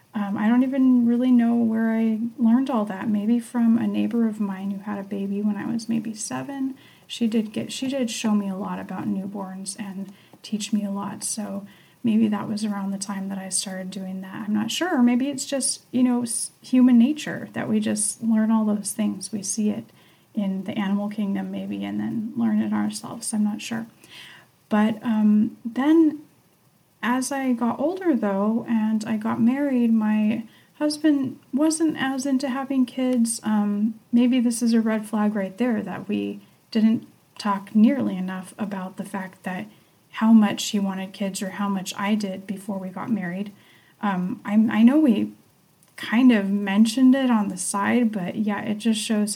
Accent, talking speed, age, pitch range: American, 190 wpm, 30-49, 200-235 Hz